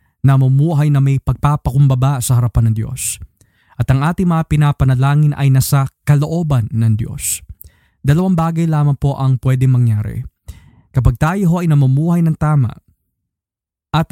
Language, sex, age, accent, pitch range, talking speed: Filipino, male, 20-39, native, 120-150 Hz, 135 wpm